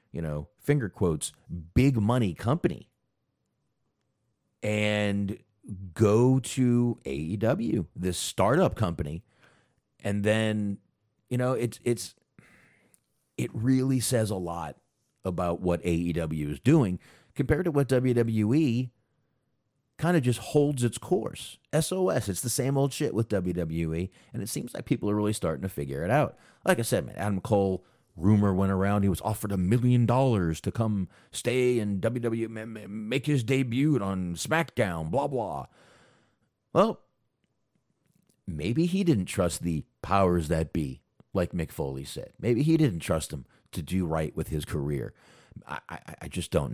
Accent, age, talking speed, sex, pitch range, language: American, 40-59, 150 wpm, male, 85-125 Hz, English